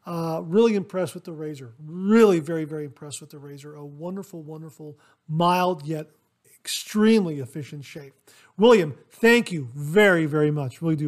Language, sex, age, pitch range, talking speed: English, male, 40-59, 155-210 Hz, 155 wpm